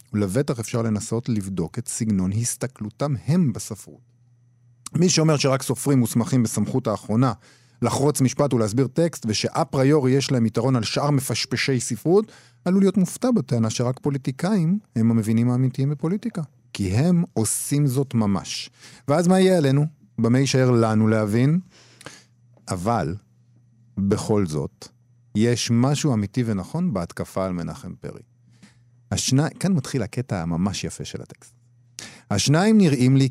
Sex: male